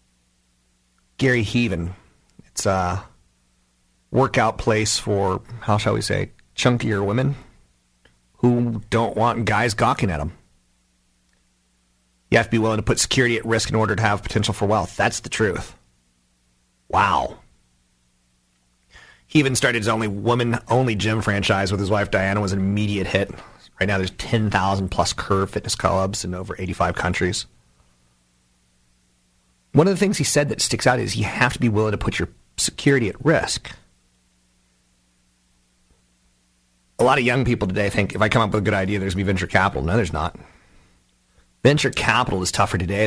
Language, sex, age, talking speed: English, male, 40-59, 165 wpm